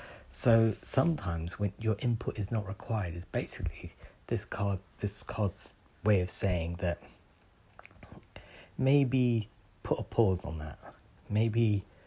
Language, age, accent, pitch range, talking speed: English, 40-59, British, 85-105 Hz, 120 wpm